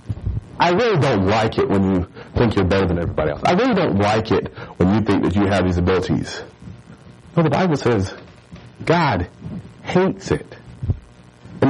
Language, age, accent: English, 40-59, American